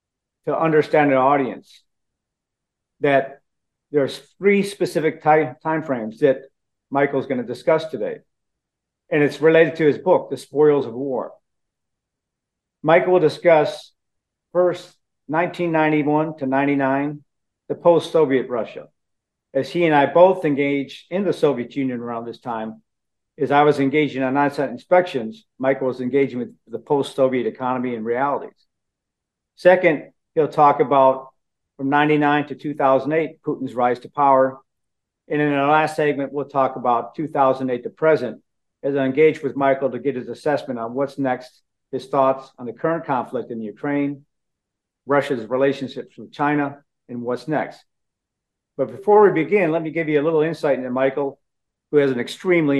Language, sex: English, male